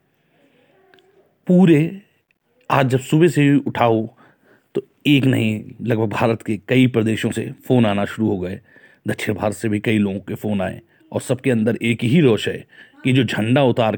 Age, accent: 40-59, native